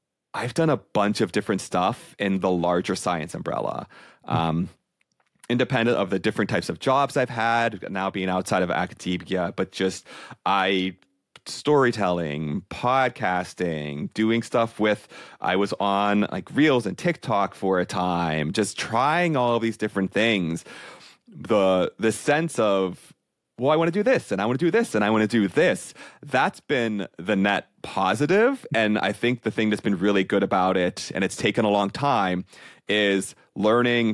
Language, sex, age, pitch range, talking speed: English, male, 30-49, 95-115 Hz, 170 wpm